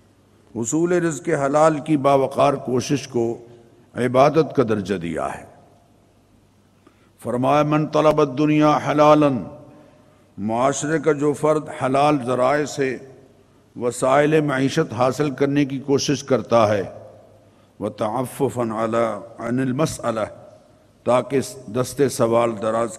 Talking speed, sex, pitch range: 105 wpm, male, 115-145 Hz